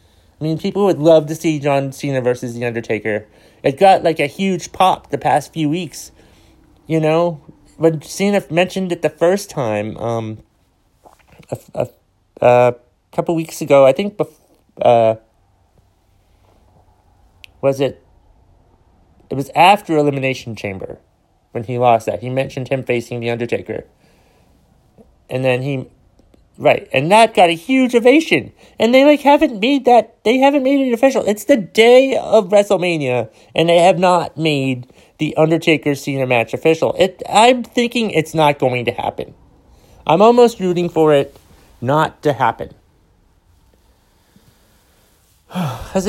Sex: male